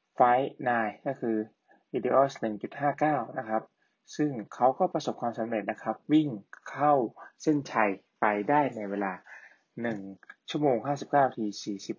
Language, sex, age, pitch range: Thai, male, 20-39, 105-130 Hz